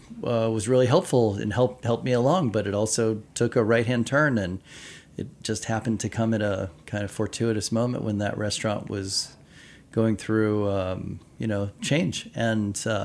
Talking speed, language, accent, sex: 180 wpm, English, American, male